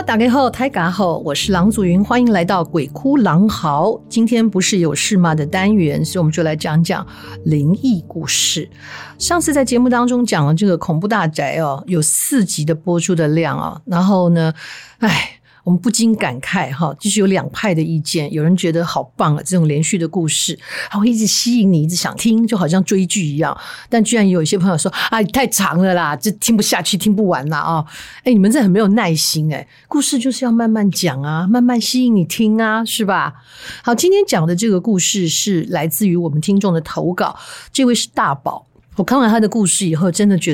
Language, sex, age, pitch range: Chinese, female, 50-69, 165-220 Hz